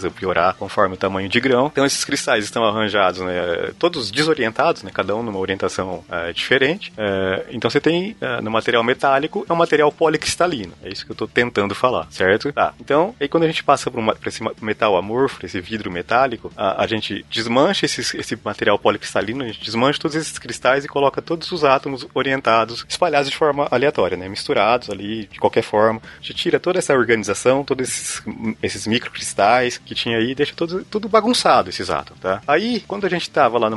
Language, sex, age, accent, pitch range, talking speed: Portuguese, male, 30-49, Brazilian, 110-160 Hz, 200 wpm